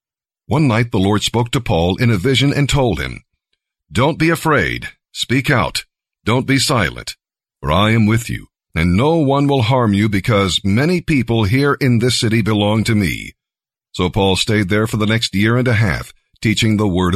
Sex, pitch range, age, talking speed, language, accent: male, 105-135 Hz, 50-69, 195 wpm, English, American